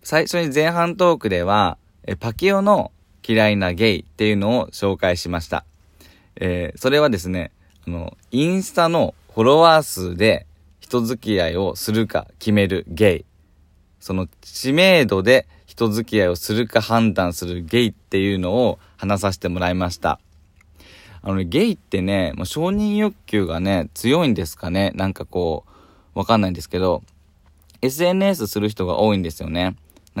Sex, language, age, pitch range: male, Japanese, 20-39, 85-115 Hz